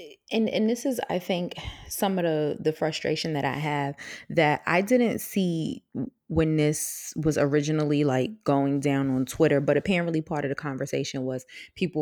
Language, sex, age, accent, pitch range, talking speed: English, female, 20-39, American, 130-160 Hz, 175 wpm